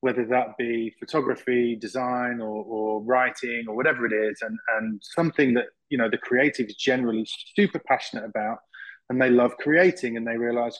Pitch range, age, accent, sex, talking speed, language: 115-135 Hz, 20-39, British, male, 185 wpm, English